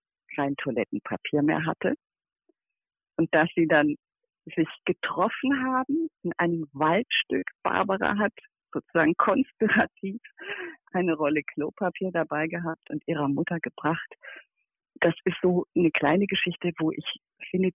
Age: 50-69